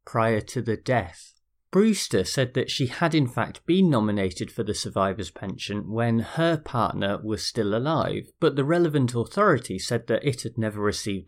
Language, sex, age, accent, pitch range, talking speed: English, male, 30-49, British, 105-150 Hz, 175 wpm